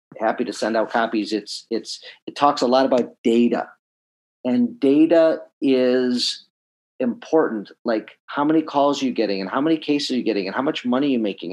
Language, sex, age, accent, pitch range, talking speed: English, male, 40-59, American, 125-155 Hz, 195 wpm